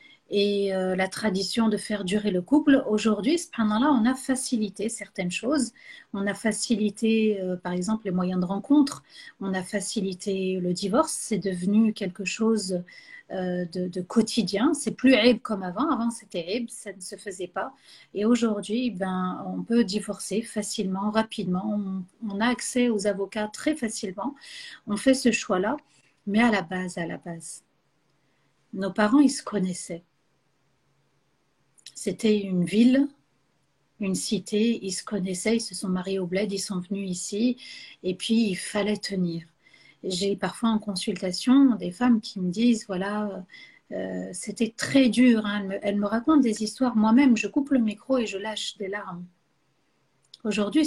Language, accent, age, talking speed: French, French, 40-59, 170 wpm